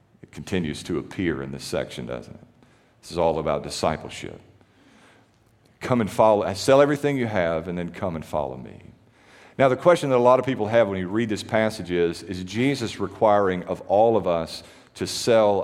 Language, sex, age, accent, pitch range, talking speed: English, male, 50-69, American, 95-140 Hz, 195 wpm